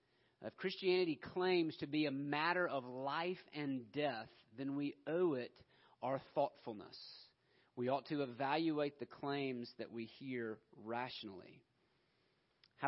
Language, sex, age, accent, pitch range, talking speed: English, male, 40-59, American, 150-195 Hz, 130 wpm